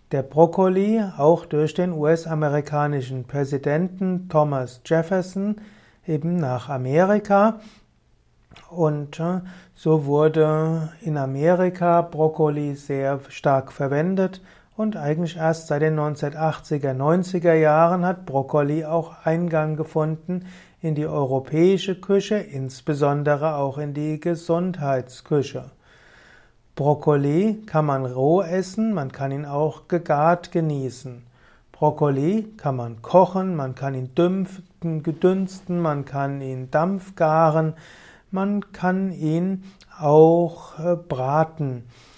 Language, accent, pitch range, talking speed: German, German, 145-180 Hz, 100 wpm